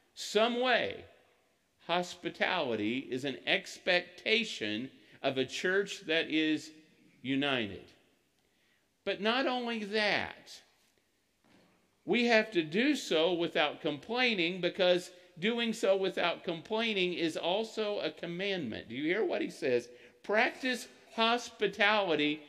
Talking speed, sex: 105 wpm, male